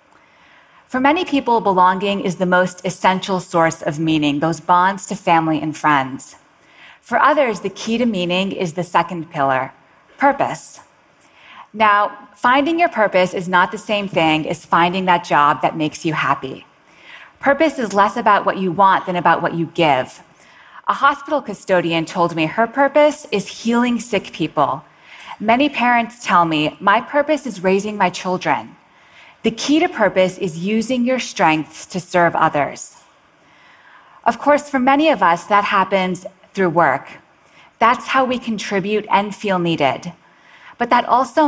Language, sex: English, female